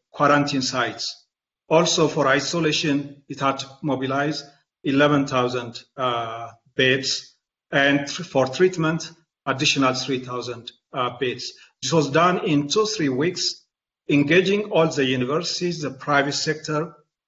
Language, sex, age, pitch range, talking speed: English, male, 40-59, 135-170 Hz, 115 wpm